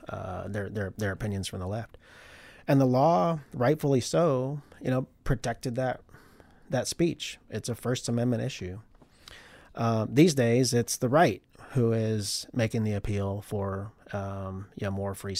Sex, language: male, English